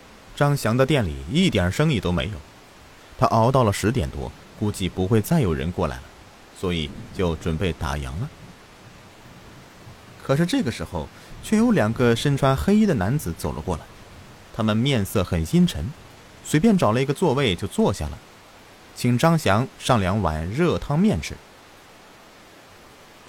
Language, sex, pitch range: Chinese, male, 90-140 Hz